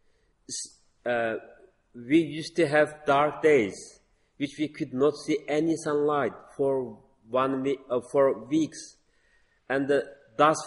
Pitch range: 130-155 Hz